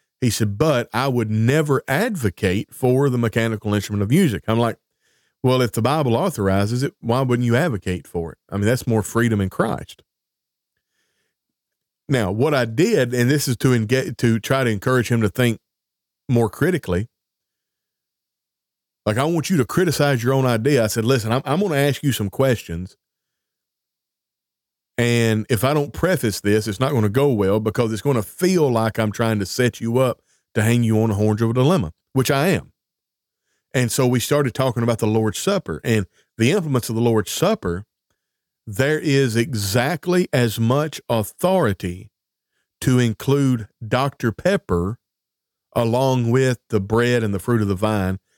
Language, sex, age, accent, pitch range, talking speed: English, male, 40-59, American, 110-130 Hz, 180 wpm